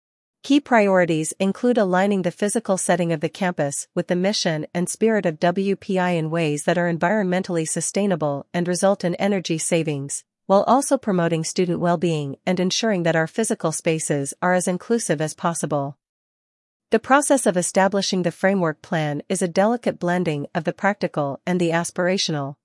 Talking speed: 160 wpm